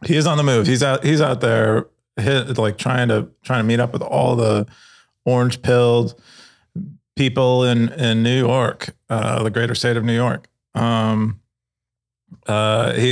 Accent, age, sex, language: American, 30-49, male, English